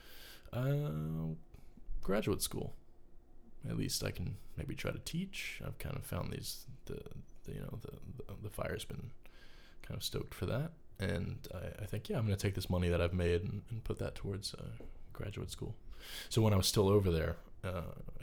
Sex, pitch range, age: male, 85-105 Hz, 20-39